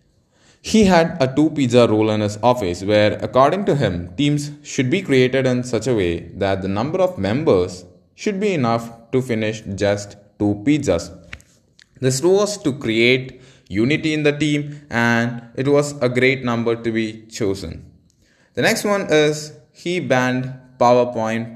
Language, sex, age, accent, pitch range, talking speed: English, male, 20-39, Indian, 105-145 Hz, 160 wpm